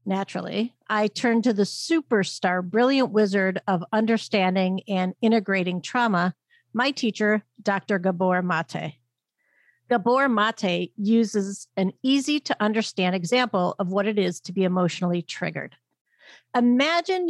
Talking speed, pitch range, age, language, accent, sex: 120 wpm, 185-240 Hz, 50-69, English, American, female